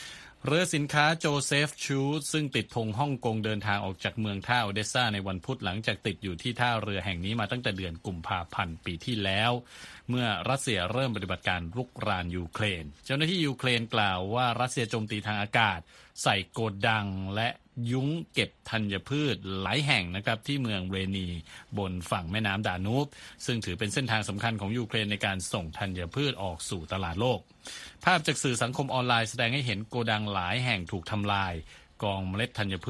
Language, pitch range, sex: Thai, 100-125 Hz, male